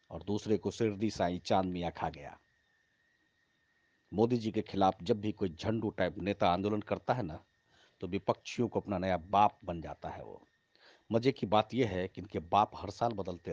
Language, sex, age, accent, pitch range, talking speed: Hindi, male, 40-59, native, 100-125 Hz, 195 wpm